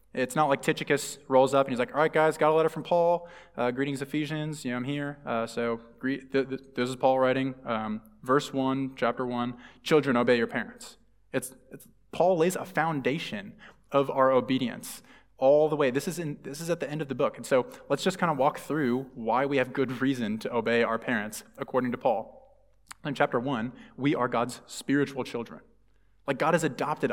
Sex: male